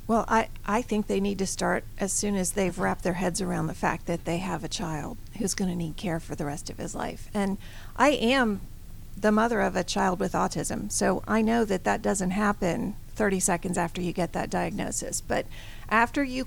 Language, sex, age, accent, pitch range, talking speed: English, female, 40-59, American, 185-225 Hz, 220 wpm